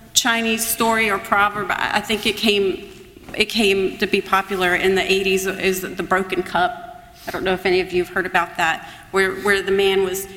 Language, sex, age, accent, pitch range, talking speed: English, female, 40-59, American, 200-270 Hz, 210 wpm